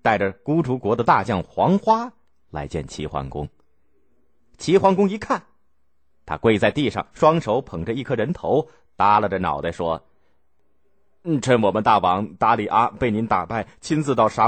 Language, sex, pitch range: Chinese, male, 80-125 Hz